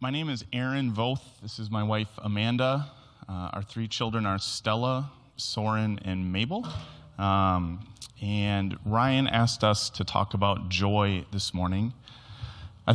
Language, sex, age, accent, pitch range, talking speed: English, male, 30-49, American, 95-115 Hz, 145 wpm